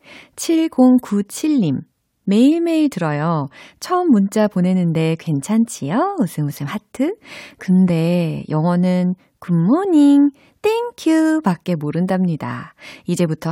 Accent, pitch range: native, 155-245 Hz